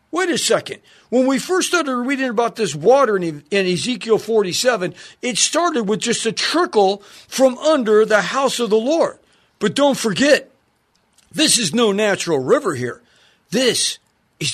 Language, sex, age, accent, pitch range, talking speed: English, male, 50-69, American, 195-260 Hz, 155 wpm